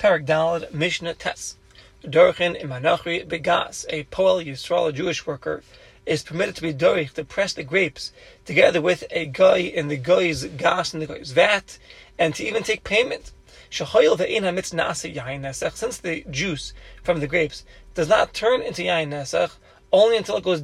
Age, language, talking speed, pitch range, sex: 30-49, English, 150 wpm, 155-190 Hz, male